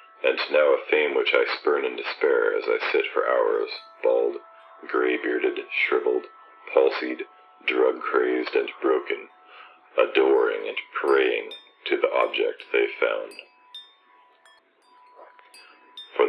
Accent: American